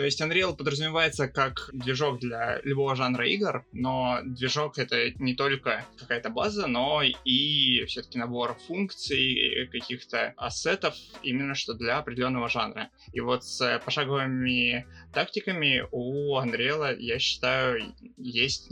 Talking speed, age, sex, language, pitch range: 125 wpm, 20-39, male, Russian, 125-145 Hz